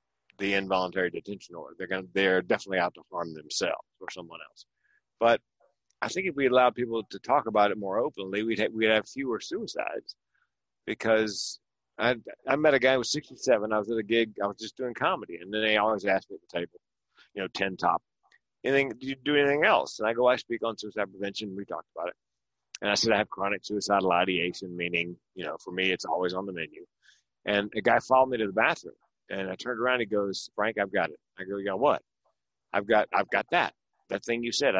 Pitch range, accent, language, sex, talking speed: 100-130 Hz, American, English, male, 230 wpm